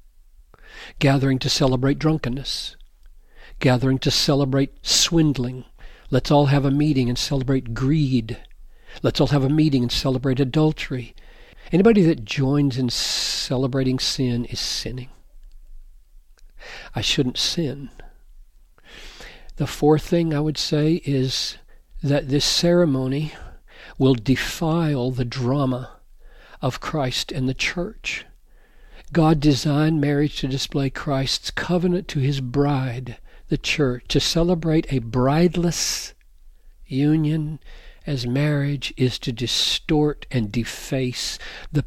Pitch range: 120-145 Hz